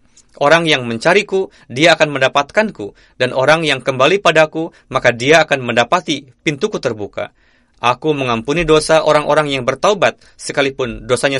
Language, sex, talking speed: Indonesian, male, 130 wpm